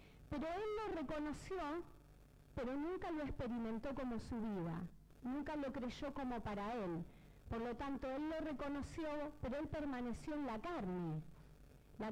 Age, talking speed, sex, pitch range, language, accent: 40-59, 150 wpm, female, 230-300 Hz, Spanish, American